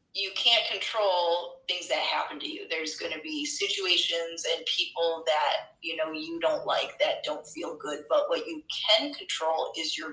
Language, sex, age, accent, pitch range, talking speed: English, female, 30-49, American, 165-270 Hz, 190 wpm